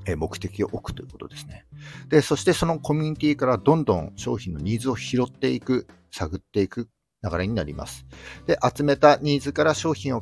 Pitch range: 95-135 Hz